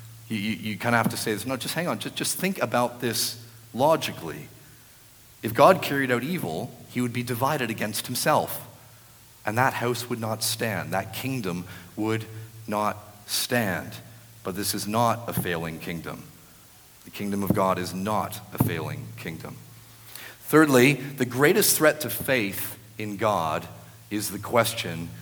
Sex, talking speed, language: male, 160 wpm, English